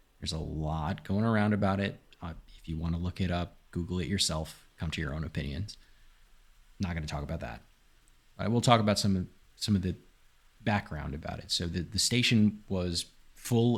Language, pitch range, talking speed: English, 90-105 Hz, 195 wpm